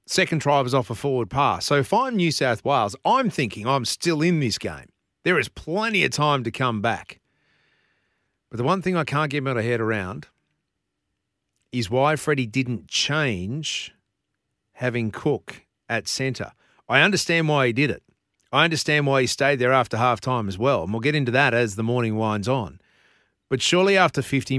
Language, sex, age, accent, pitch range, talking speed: English, male, 40-59, Australian, 115-145 Hz, 185 wpm